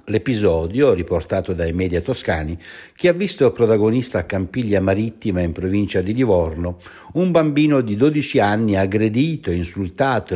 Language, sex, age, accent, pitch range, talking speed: Italian, male, 60-79, native, 85-115 Hz, 135 wpm